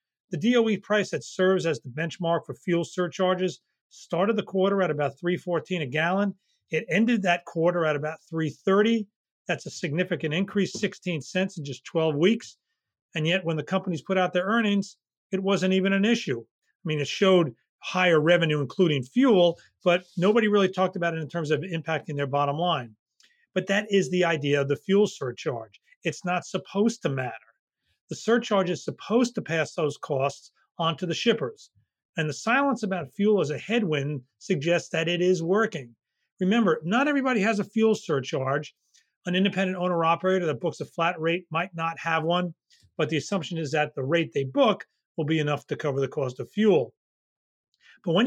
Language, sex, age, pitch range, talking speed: English, male, 40-59, 160-195 Hz, 185 wpm